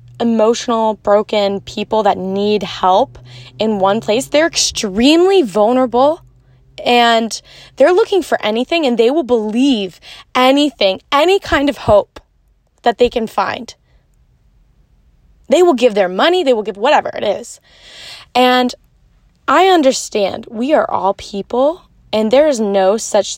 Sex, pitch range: female, 200-260 Hz